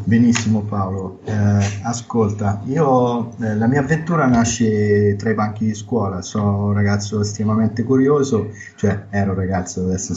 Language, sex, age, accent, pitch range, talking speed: Italian, male, 30-49, native, 95-115 Hz, 150 wpm